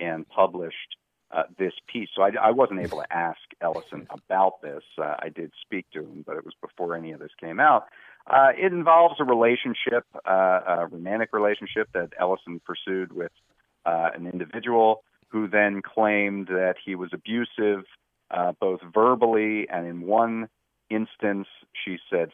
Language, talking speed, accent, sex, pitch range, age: English, 165 wpm, American, male, 90-115 Hz, 40-59